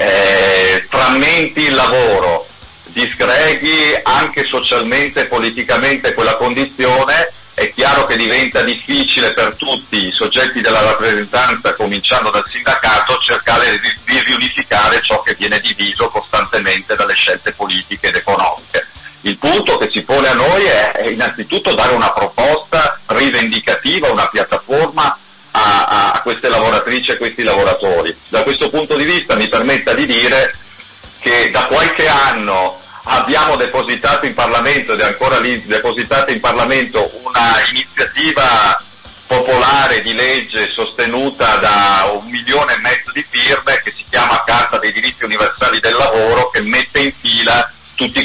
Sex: male